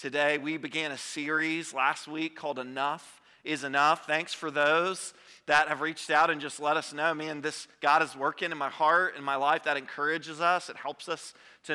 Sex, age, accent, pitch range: male, 40-59, American, 155-200 Hz